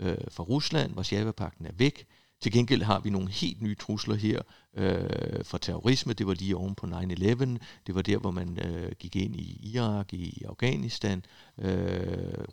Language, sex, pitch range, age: Danish, male, 100-120 Hz, 60-79